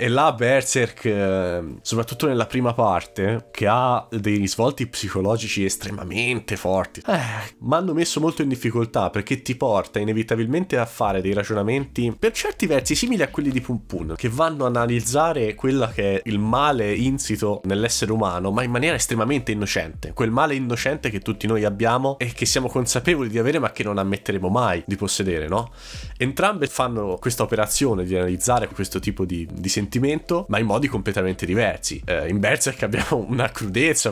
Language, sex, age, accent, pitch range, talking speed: Italian, male, 20-39, native, 95-120 Hz, 170 wpm